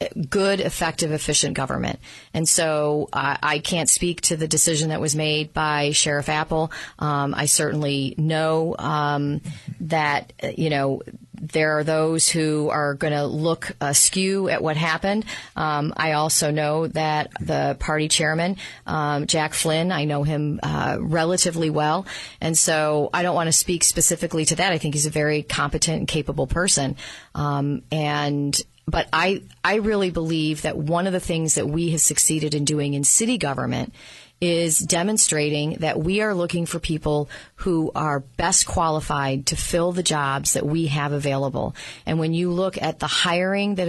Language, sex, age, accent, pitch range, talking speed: English, female, 40-59, American, 150-175 Hz, 170 wpm